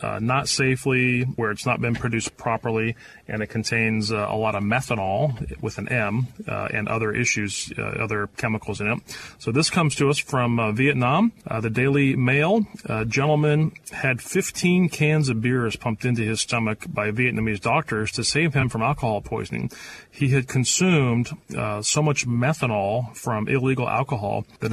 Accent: American